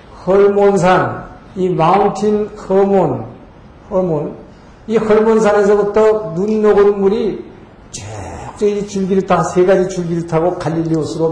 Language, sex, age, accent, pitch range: Korean, male, 50-69, native, 175-215 Hz